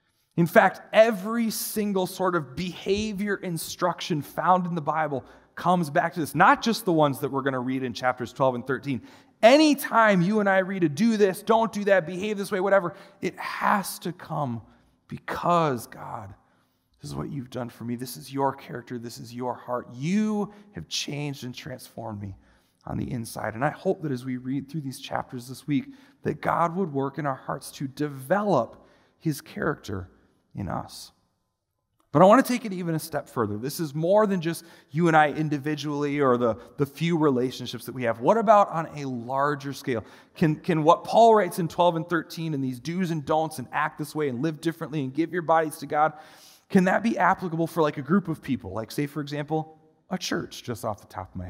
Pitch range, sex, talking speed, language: 135-185 Hz, male, 210 wpm, English